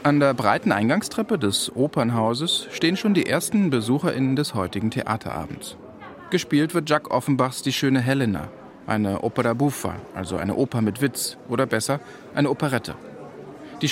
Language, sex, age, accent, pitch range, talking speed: German, male, 40-59, German, 110-165 Hz, 145 wpm